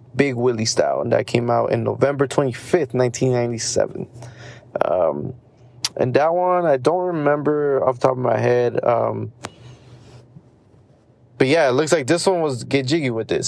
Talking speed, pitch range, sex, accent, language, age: 165 wpm, 120-135 Hz, male, American, English, 20-39